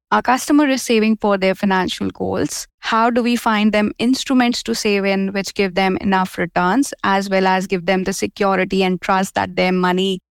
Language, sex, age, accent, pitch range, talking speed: English, female, 20-39, Indian, 190-220 Hz, 200 wpm